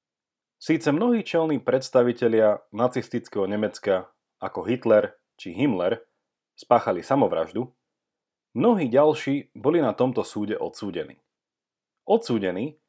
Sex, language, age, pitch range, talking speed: male, Slovak, 30-49, 115-160 Hz, 95 wpm